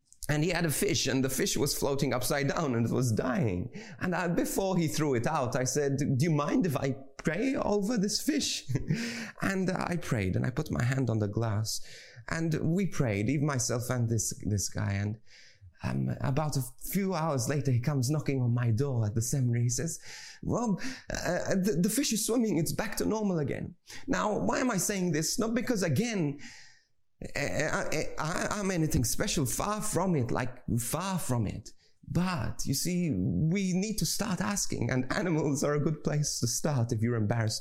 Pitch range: 120-175 Hz